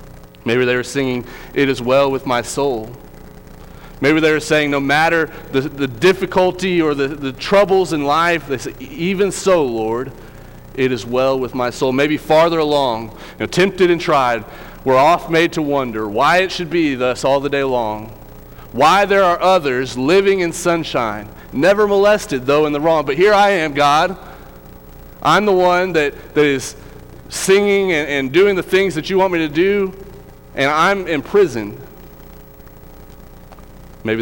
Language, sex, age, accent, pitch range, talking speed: English, male, 30-49, American, 115-165 Hz, 175 wpm